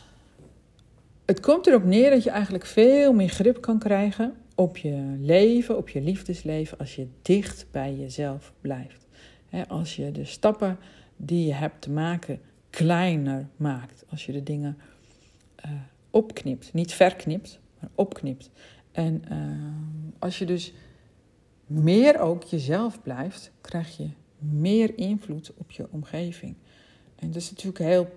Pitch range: 145-185 Hz